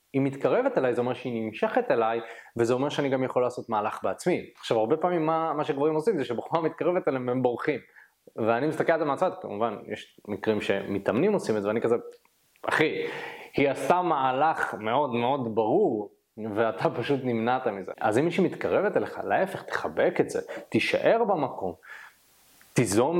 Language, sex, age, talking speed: Hebrew, male, 20-39, 175 wpm